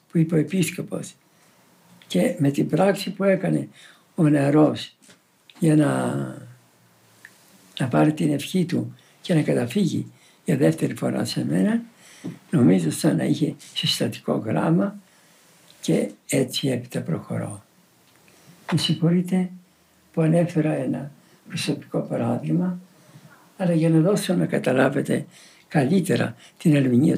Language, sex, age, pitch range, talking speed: Greek, male, 60-79, 150-195 Hz, 115 wpm